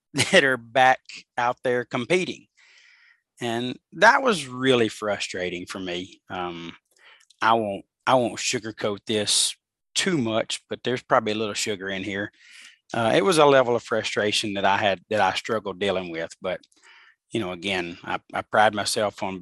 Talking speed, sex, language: 165 wpm, male, English